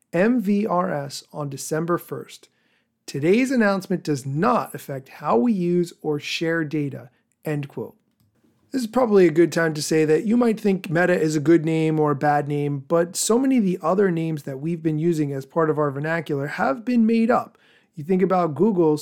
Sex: male